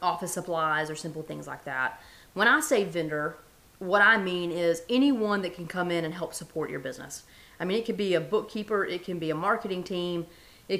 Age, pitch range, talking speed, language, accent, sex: 30-49, 170-210 Hz, 215 wpm, English, American, female